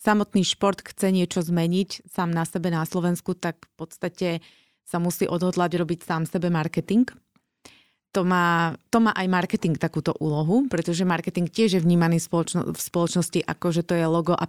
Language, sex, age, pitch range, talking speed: Slovak, female, 30-49, 165-190 Hz, 170 wpm